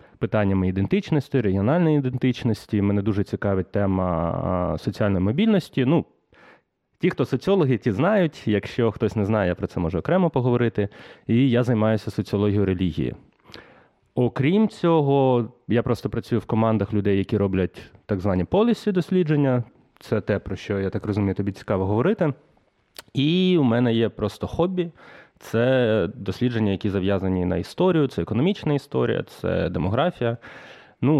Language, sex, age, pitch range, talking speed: Ukrainian, male, 30-49, 95-130 Hz, 140 wpm